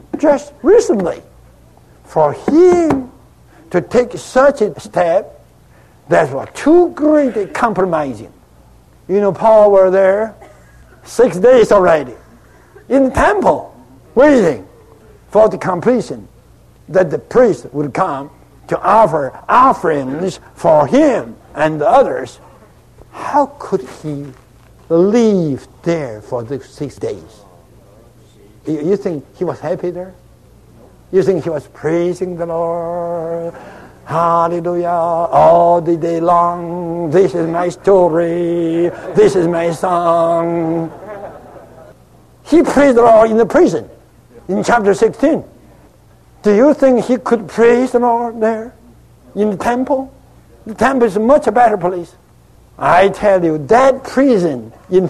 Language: English